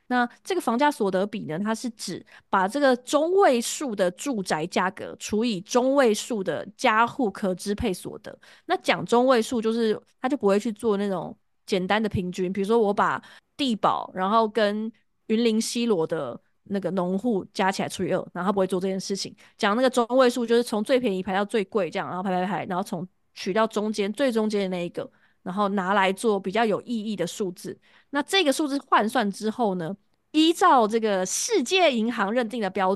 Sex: female